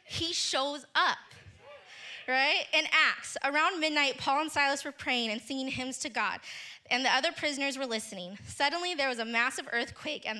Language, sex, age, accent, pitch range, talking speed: English, female, 20-39, American, 280-375 Hz, 180 wpm